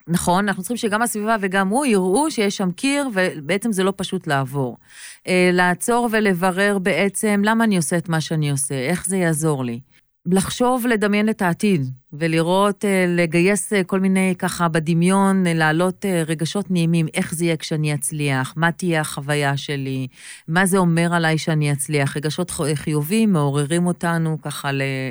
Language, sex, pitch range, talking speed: Hebrew, female, 160-195 Hz, 155 wpm